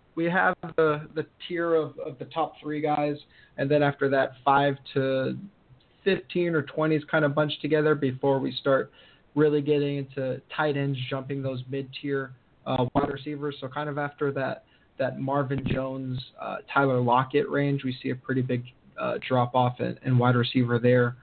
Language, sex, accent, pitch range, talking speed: English, male, American, 130-150 Hz, 175 wpm